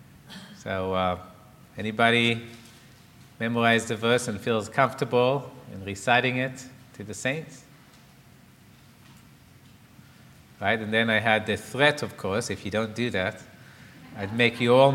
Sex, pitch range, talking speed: male, 110-140 Hz, 135 wpm